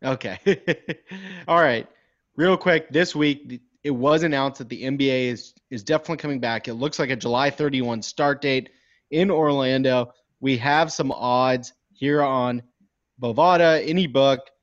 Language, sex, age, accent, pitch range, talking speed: English, male, 30-49, American, 120-150 Hz, 150 wpm